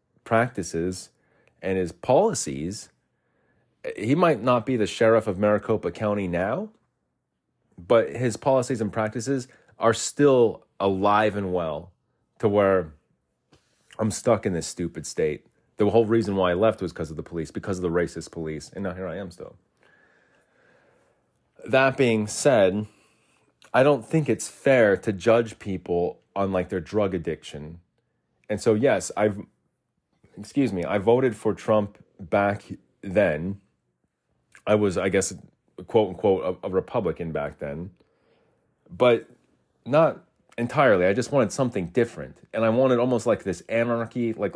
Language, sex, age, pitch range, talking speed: English, male, 30-49, 90-115 Hz, 145 wpm